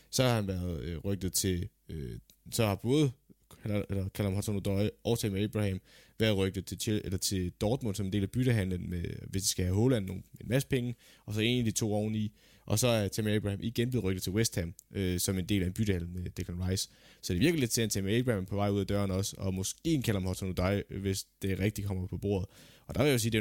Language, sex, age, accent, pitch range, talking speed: Danish, male, 20-39, native, 95-115 Hz, 240 wpm